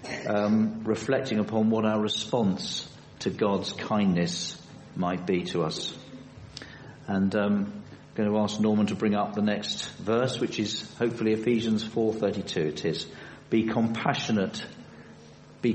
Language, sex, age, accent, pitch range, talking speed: English, male, 50-69, British, 95-135 Hz, 135 wpm